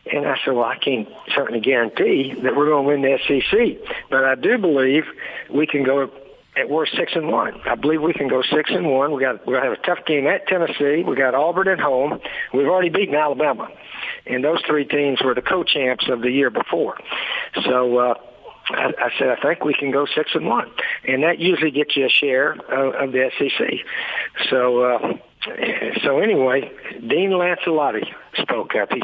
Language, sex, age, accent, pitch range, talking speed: English, male, 60-79, American, 135-185 Hz, 205 wpm